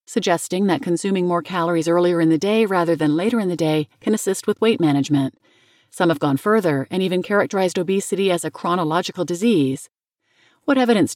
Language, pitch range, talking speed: English, 155-200 Hz, 185 wpm